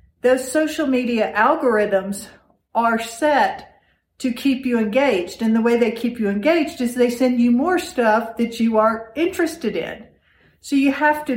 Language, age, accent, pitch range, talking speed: English, 50-69, American, 215-255 Hz, 170 wpm